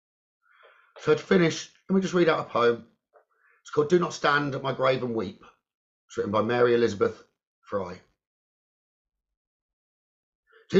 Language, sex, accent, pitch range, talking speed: English, male, British, 115-190 Hz, 150 wpm